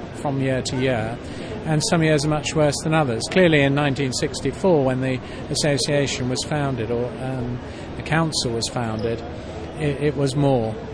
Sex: male